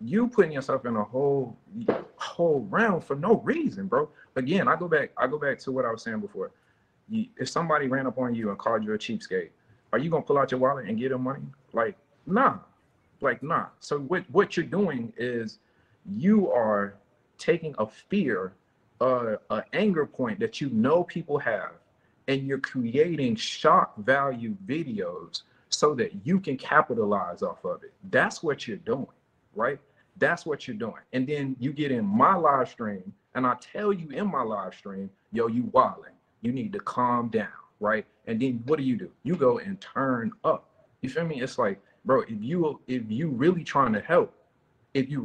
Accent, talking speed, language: American, 195 wpm, English